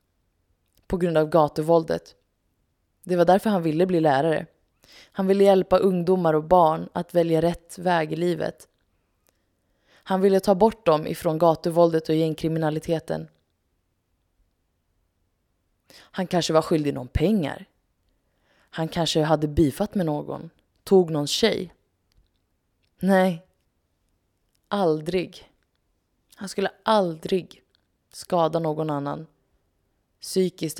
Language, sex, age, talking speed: Swedish, female, 20-39, 110 wpm